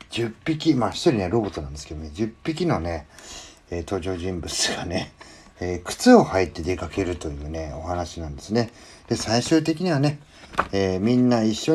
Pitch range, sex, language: 85-115 Hz, male, Japanese